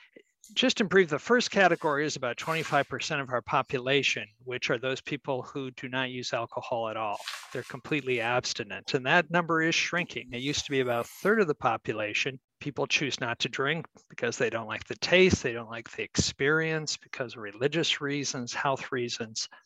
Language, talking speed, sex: English, 190 wpm, male